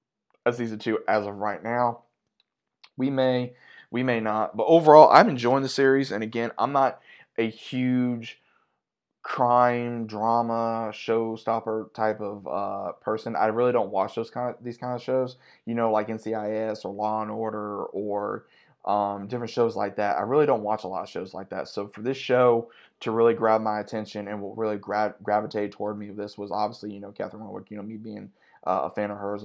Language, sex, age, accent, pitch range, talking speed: English, male, 20-39, American, 105-115 Hz, 200 wpm